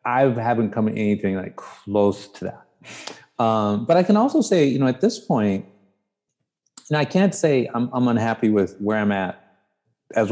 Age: 30-49